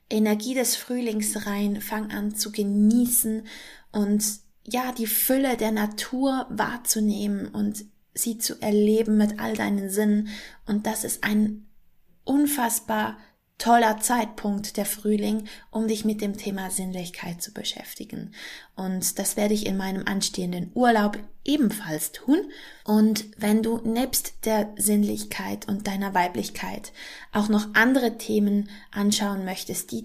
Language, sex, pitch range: German, female, 205-235 Hz